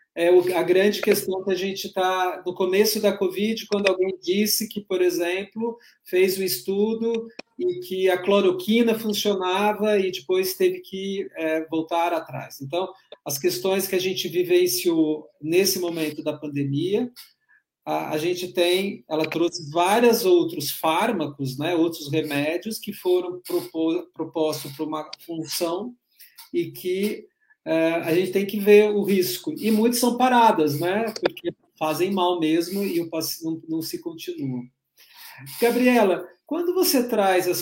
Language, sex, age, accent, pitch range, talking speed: Portuguese, male, 40-59, Brazilian, 160-210 Hz, 140 wpm